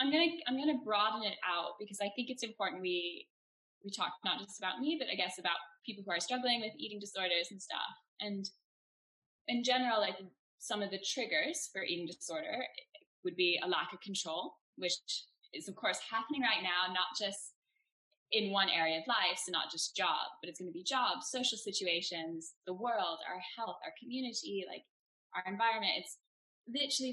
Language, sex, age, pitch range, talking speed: English, female, 10-29, 180-250 Hz, 190 wpm